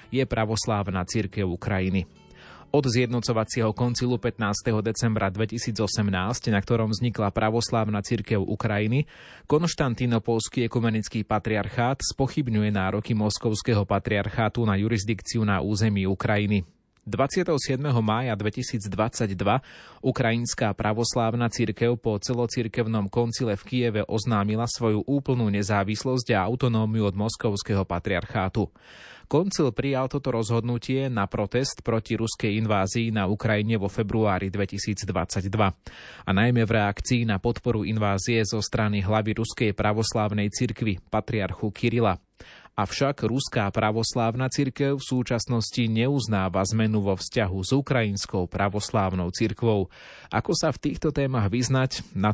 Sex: male